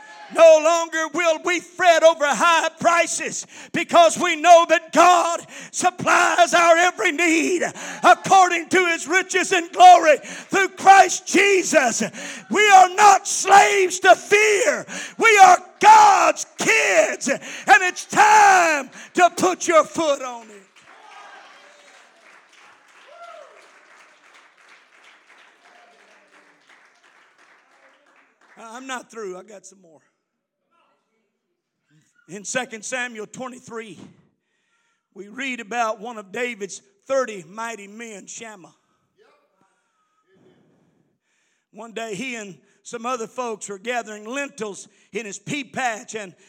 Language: English